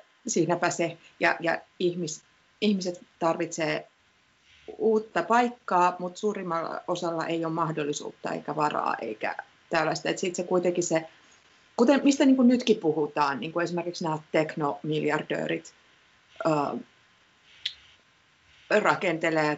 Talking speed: 105 wpm